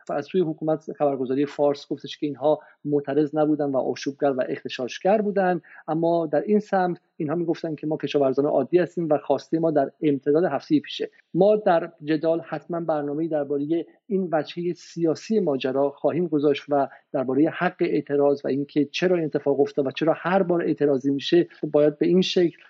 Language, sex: Persian, male